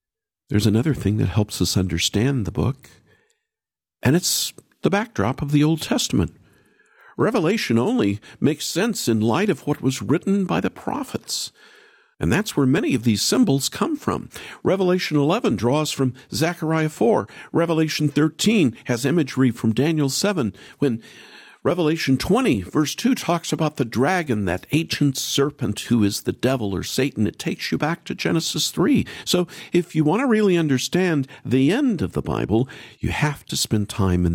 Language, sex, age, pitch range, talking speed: English, male, 50-69, 100-155 Hz, 165 wpm